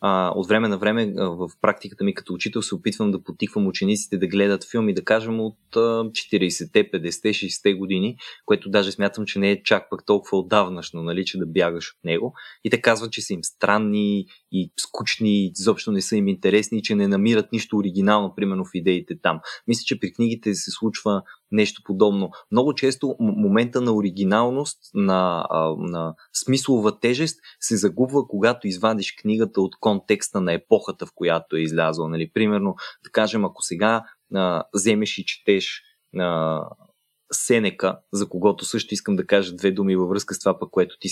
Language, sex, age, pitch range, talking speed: Bulgarian, male, 20-39, 95-110 Hz, 170 wpm